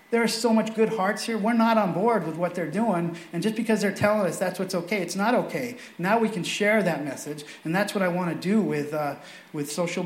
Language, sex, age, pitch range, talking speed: English, male, 40-59, 170-220 Hz, 265 wpm